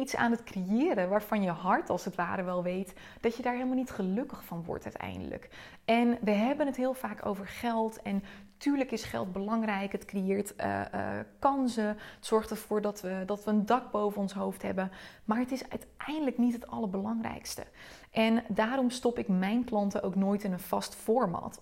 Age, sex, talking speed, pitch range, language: 20-39, female, 195 wpm, 195-245 Hz, Dutch